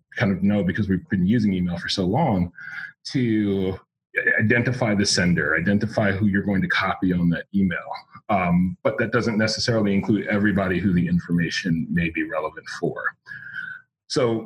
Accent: American